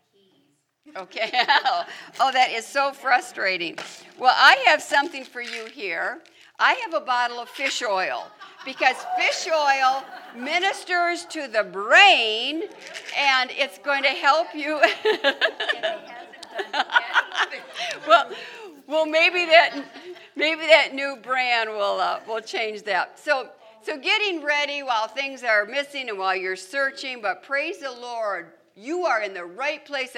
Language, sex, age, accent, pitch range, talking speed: English, female, 60-79, American, 205-315 Hz, 135 wpm